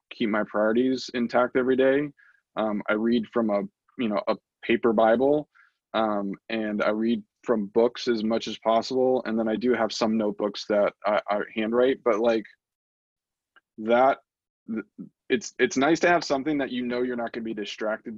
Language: English